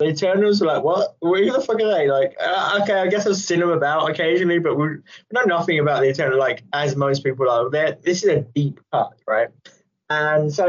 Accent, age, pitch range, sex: British, 20-39, 130-170 Hz, male